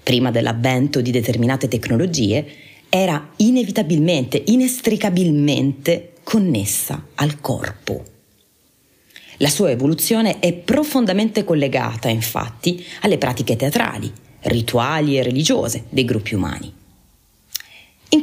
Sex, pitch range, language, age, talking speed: female, 125-165 Hz, Italian, 30-49, 90 wpm